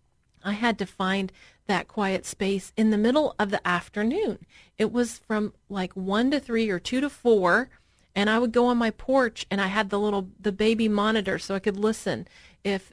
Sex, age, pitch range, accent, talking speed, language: female, 40-59, 205-260 Hz, American, 205 wpm, English